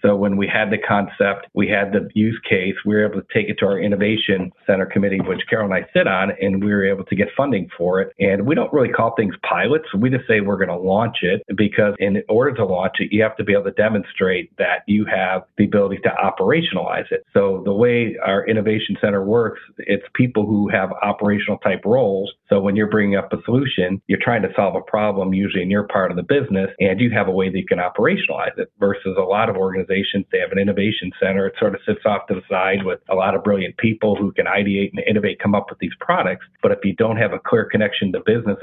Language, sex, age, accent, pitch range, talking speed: English, male, 50-69, American, 95-105 Hz, 250 wpm